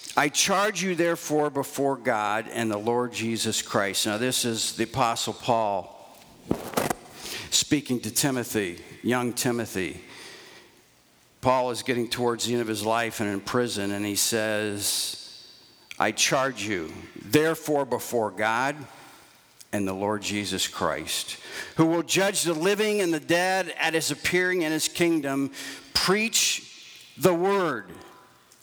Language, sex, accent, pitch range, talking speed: English, male, American, 110-165 Hz, 135 wpm